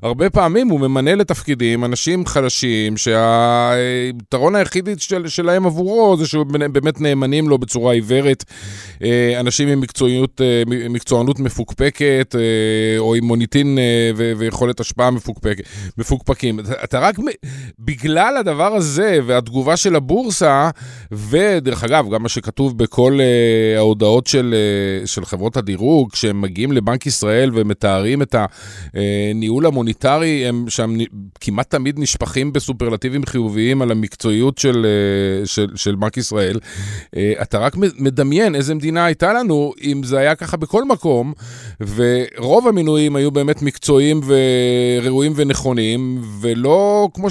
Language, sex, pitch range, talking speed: Hebrew, male, 115-150 Hz, 120 wpm